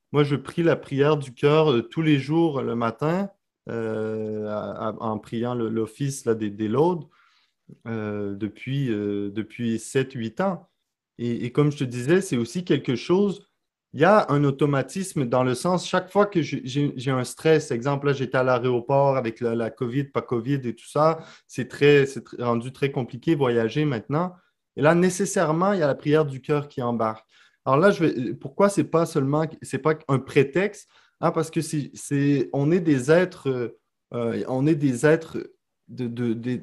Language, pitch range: French, 125-160 Hz